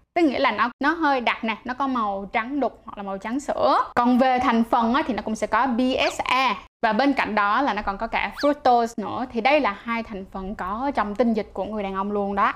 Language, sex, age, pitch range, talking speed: Vietnamese, female, 10-29, 215-275 Hz, 270 wpm